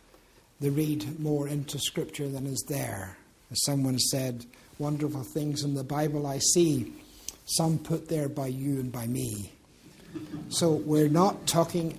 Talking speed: 150 wpm